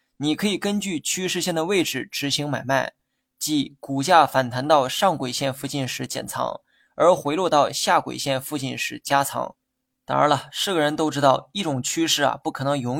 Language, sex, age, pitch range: Chinese, male, 20-39, 135-165 Hz